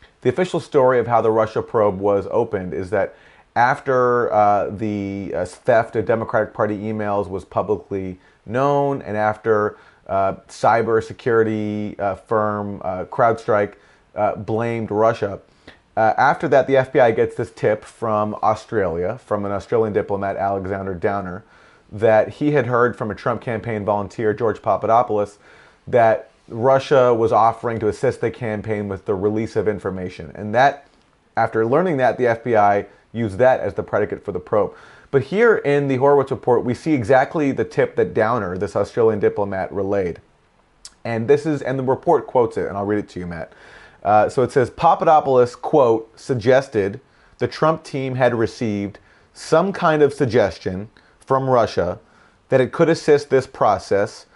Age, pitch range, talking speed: 30-49, 105-130 Hz, 160 wpm